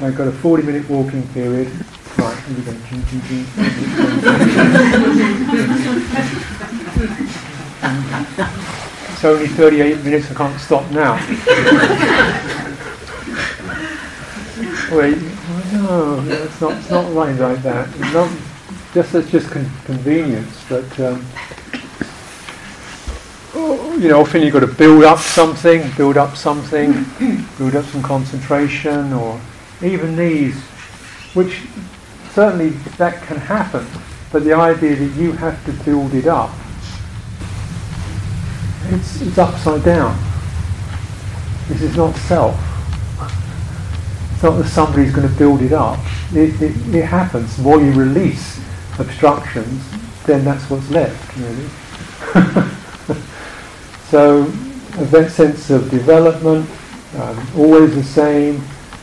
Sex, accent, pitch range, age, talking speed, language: male, British, 125-160 Hz, 50-69, 115 wpm, English